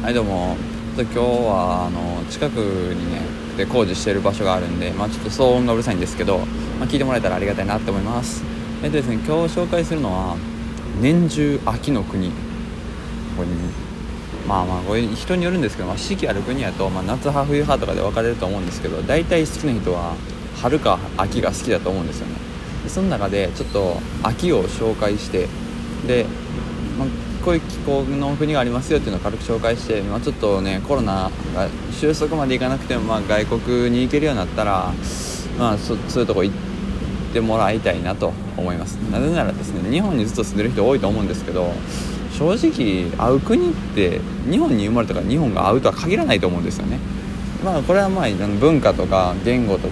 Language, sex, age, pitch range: Japanese, male, 20-39, 95-135 Hz